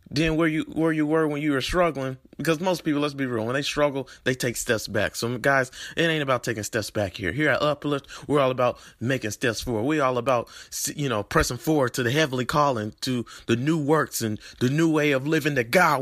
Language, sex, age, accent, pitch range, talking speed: English, male, 30-49, American, 100-135 Hz, 240 wpm